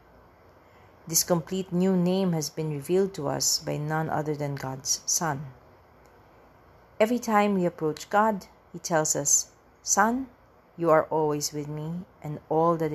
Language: English